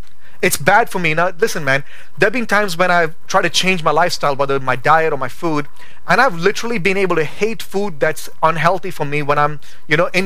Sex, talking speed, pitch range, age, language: male, 240 wpm, 130-175 Hz, 30-49, English